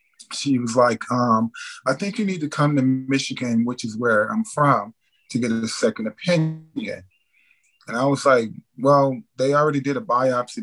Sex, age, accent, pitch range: male, 20-39, American, 110-140 Hz